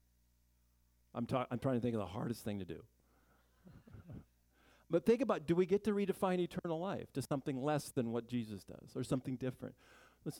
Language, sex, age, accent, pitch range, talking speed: English, male, 50-69, American, 90-130 Hz, 185 wpm